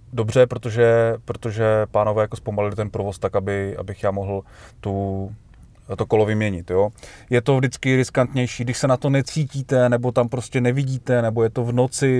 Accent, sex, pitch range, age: native, male, 95-120 Hz, 30-49